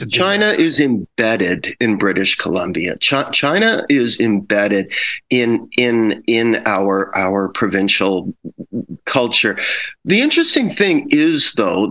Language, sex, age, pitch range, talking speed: English, male, 50-69, 105-165 Hz, 110 wpm